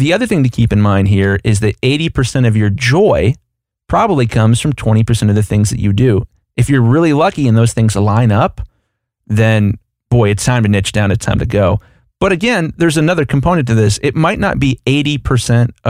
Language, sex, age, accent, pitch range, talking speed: English, male, 30-49, American, 110-130 Hz, 210 wpm